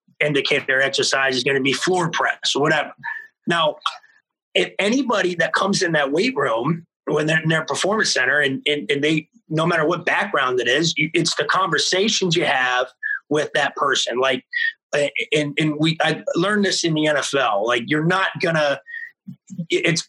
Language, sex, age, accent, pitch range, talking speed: English, male, 30-49, American, 155-220 Hz, 175 wpm